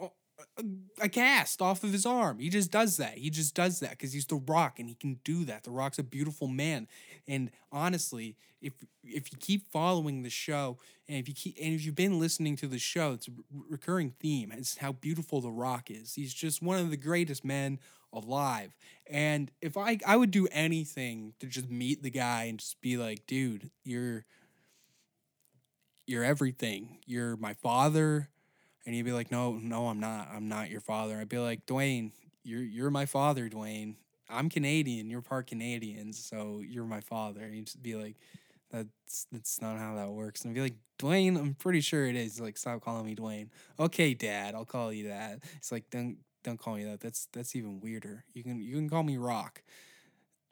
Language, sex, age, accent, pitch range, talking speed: English, male, 20-39, American, 115-155 Hz, 205 wpm